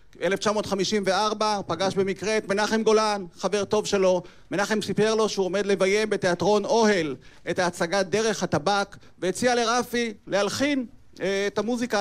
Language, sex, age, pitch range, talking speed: Hebrew, male, 40-59, 190-220 Hz, 130 wpm